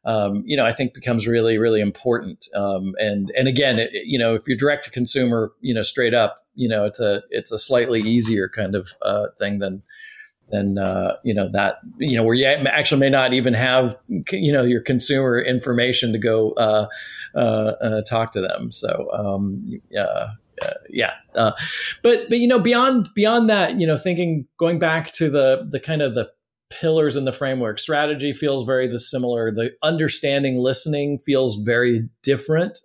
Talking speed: 190 wpm